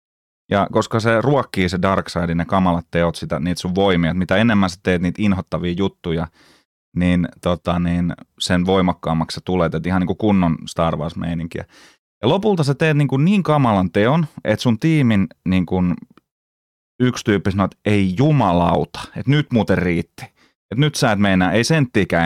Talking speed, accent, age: 175 wpm, native, 30-49